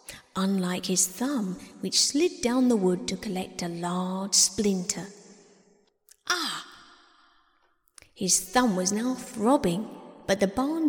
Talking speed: 120 wpm